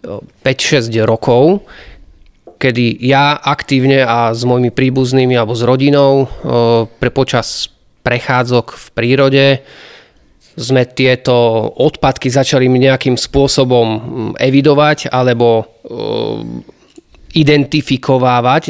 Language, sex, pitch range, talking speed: Slovak, male, 120-135 Hz, 85 wpm